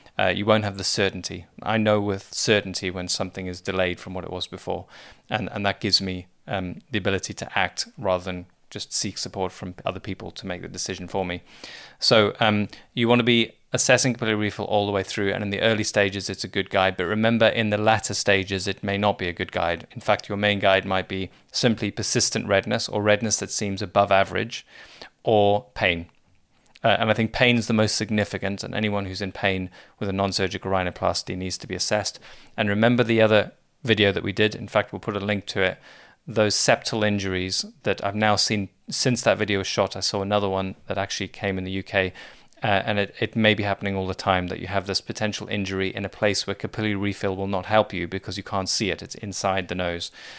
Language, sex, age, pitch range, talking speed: English, male, 20-39, 95-110 Hz, 225 wpm